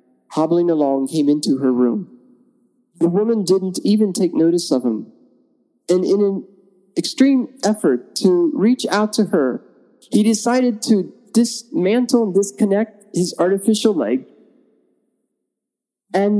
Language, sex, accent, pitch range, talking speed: English, male, American, 170-245 Hz, 125 wpm